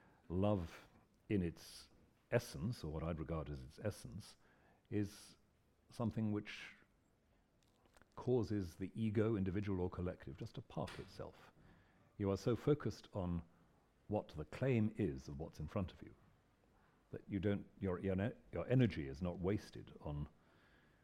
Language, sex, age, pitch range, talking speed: English, male, 50-69, 80-105 Hz, 140 wpm